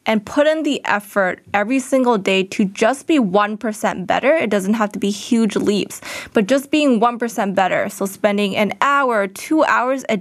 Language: English